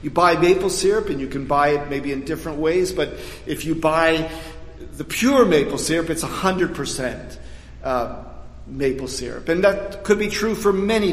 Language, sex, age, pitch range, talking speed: English, male, 50-69, 145-185 Hz, 180 wpm